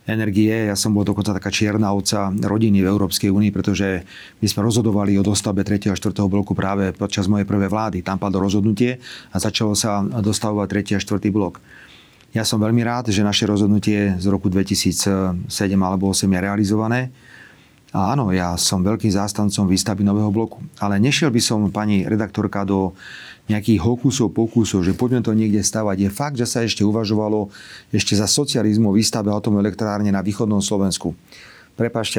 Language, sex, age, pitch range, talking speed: Slovak, male, 30-49, 95-110 Hz, 170 wpm